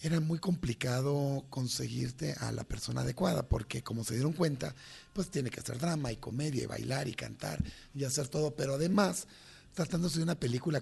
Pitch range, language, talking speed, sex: 130-165 Hz, Spanish, 185 wpm, male